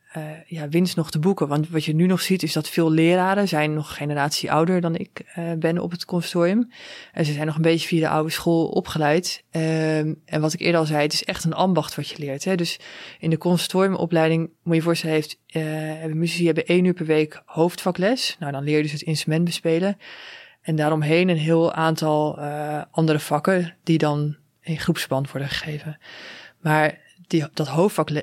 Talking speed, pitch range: 210 wpm, 155-170 Hz